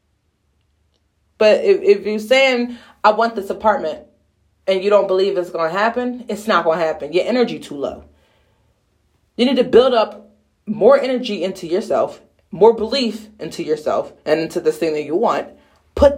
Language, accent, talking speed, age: English, American, 175 wpm, 30-49